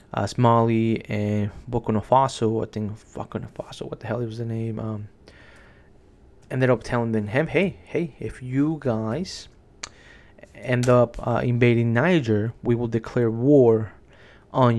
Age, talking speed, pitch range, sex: 20-39, 145 wpm, 110-125 Hz, male